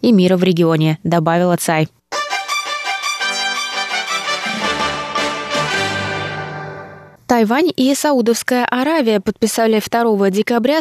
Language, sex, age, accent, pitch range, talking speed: Russian, female, 20-39, native, 185-245 Hz, 70 wpm